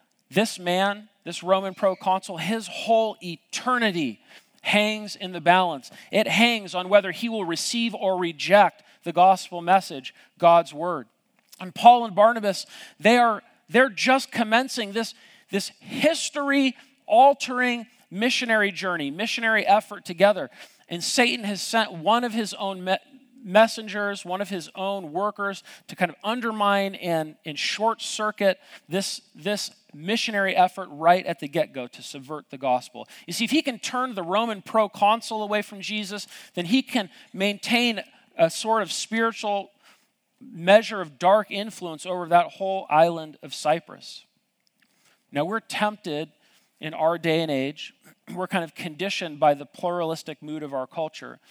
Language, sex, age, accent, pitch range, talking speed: English, male, 40-59, American, 175-225 Hz, 150 wpm